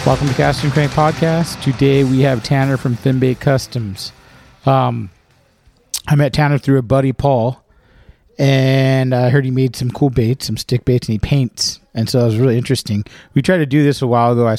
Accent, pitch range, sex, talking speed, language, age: American, 120-145 Hz, male, 200 wpm, English, 40-59